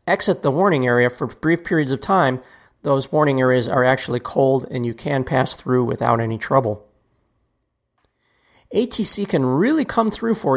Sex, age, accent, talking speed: male, 40-59, American, 165 wpm